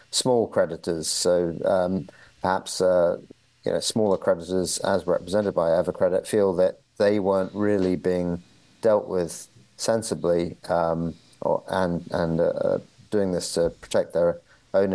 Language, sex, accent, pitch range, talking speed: English, male, British, 90-100 Hz, 135 wpm